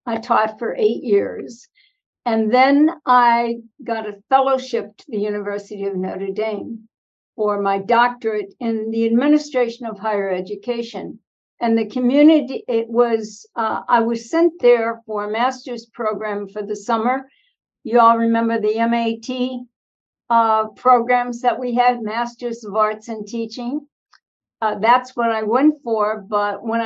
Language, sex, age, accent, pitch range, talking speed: English, female, 60-79, American, 215-245 Hz, 145 wpm